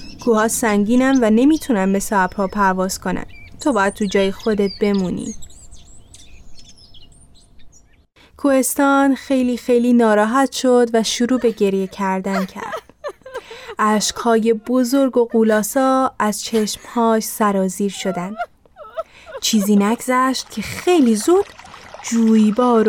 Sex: female